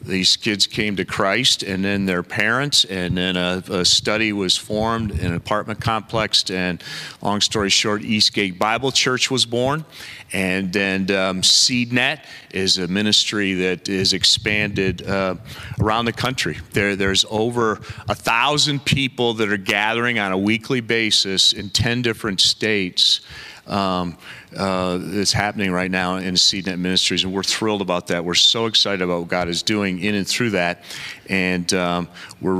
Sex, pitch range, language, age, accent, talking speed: male, 90-110 Hz, English, 40-59, American, 165 wpm